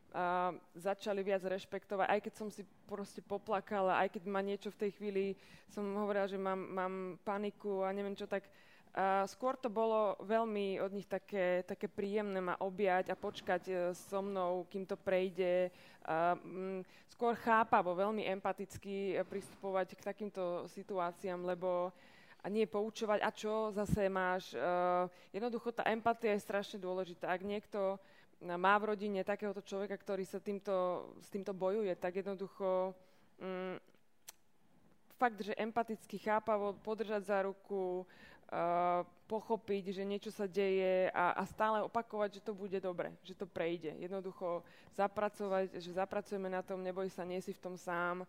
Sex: female